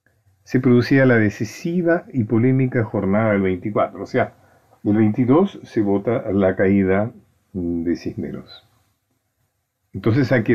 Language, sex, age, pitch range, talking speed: Spanish, male, 50-69, 100-130 Hz, 125 wpm